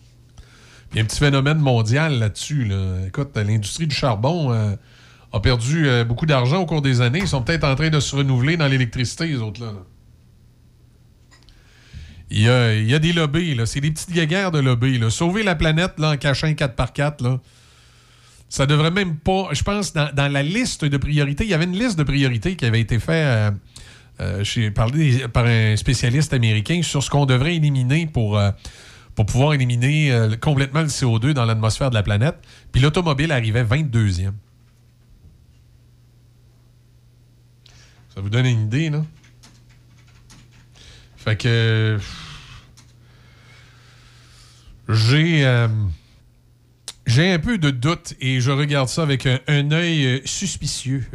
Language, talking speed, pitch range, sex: French, 160 wpm, 115-145 Hz, male